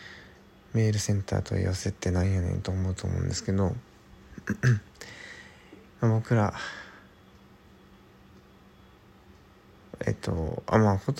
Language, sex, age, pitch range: Japanese, male, 20-39, 95-115 Hz